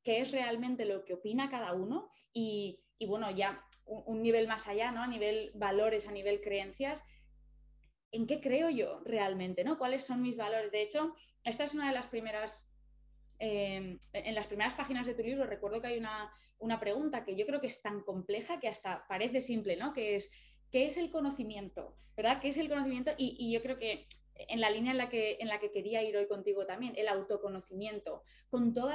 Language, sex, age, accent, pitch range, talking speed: Spanish, female, 20-39, Spanish, 205-250 Hz, 210 wpm